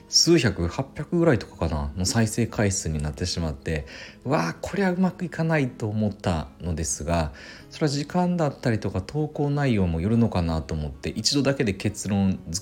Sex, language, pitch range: male, Japanese, 85-125 Hz